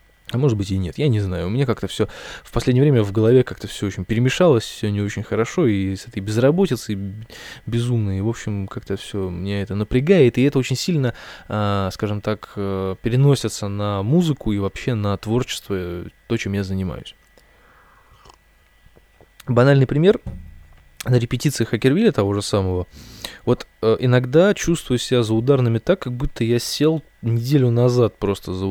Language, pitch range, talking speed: Russian, 100-125 Hz, 160 wpm